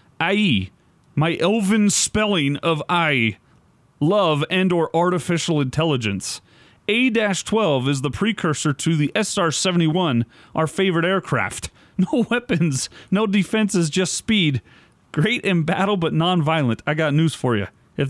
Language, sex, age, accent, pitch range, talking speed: English, male, 30-49, American, 140-195 Hz, 125 wpm